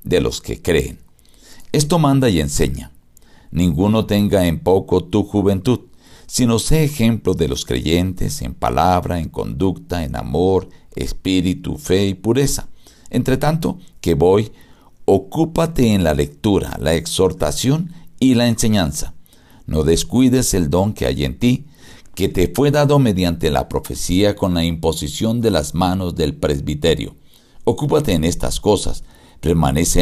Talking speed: 140 wpm